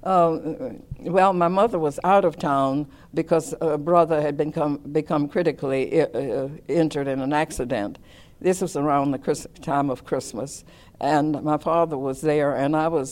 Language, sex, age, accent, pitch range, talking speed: English, female, 60-79, American, 135-160 Hz, 160 wpm